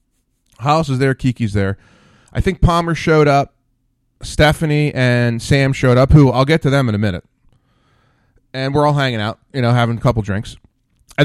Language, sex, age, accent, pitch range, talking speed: English, male, 30-49, American, 120-170 Hz, 185 wpm